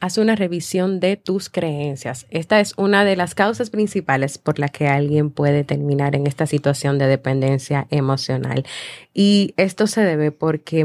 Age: 30-49